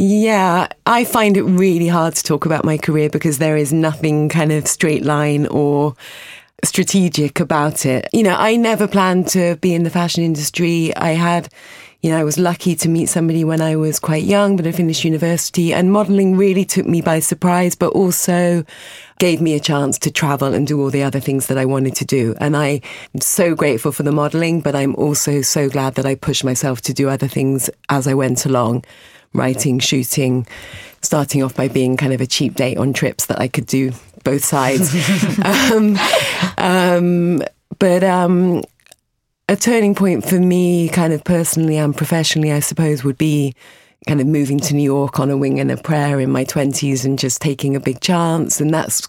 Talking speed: 200 wpm